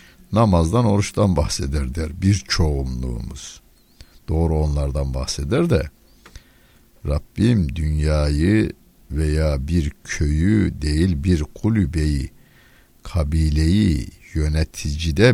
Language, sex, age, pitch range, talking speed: Turkish, male, 60-79, 75-95 Hz, 80 wpm